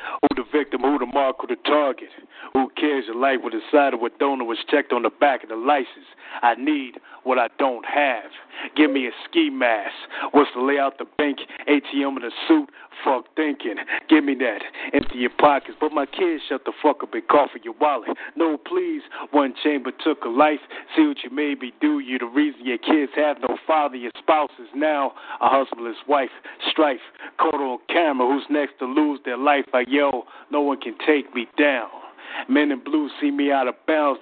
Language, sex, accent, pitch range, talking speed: English, male, American, 130-155 Hz, 215 wpm